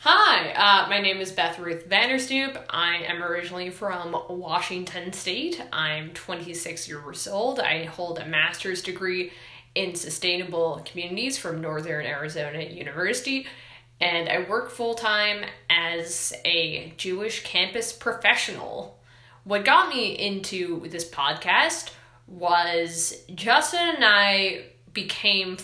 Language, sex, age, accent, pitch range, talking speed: English, female, 20-39, American, 170-205 Hz, 115 wpm